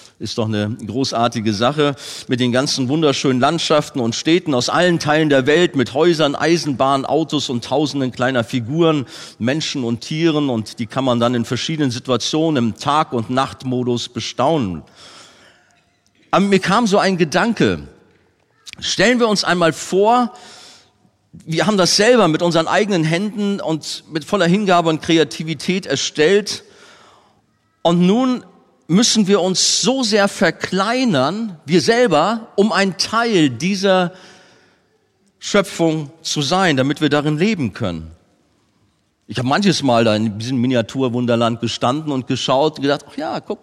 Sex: male